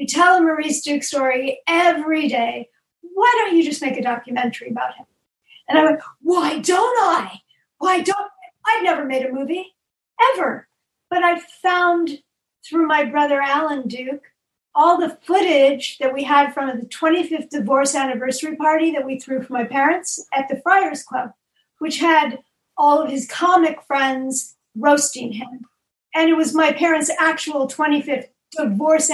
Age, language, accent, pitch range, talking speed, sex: 50-69, English, American, 265-330 Hz, 165 wpm, female